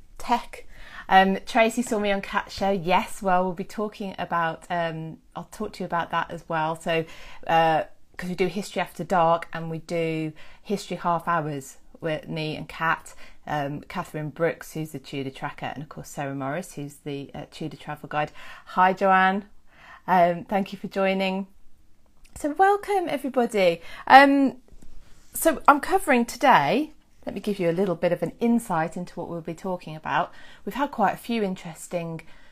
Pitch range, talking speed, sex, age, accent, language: 160-195 Hz, 175 wpm, female, 30-49, British, English